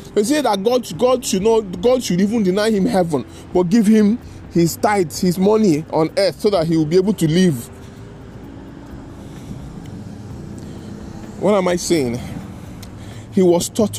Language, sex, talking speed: English, male, 160 wpm